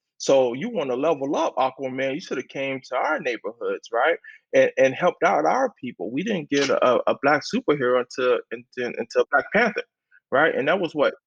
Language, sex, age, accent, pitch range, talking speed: English, male, 20-39, American, 130-190 Hz, 200 wpm